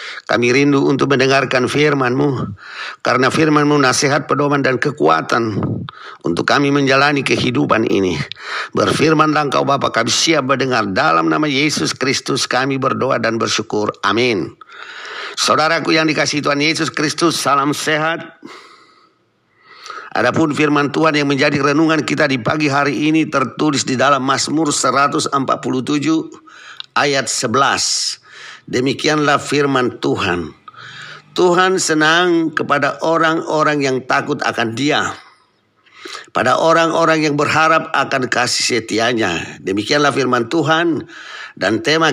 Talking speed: 115 wpm